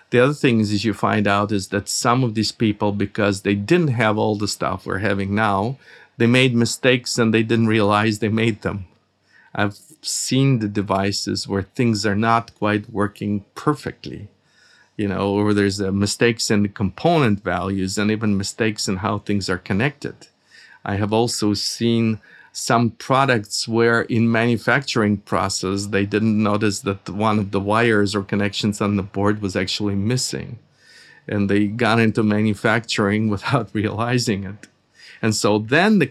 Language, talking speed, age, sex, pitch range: English, 170 wpm, 50-69, male, 105-120 Hz